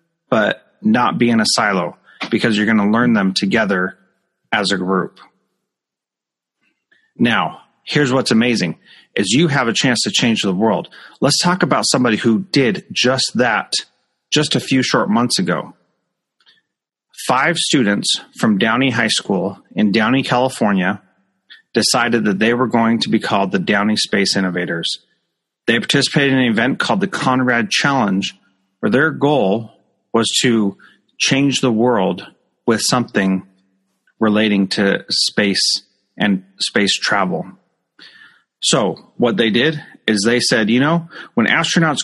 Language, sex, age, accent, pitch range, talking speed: English, male, 30-49, American, 105-135 Hz, 145 wpm